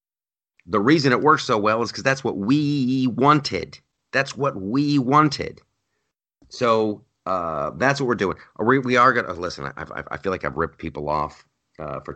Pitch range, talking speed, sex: 85-130 Hz, 185 wpm, male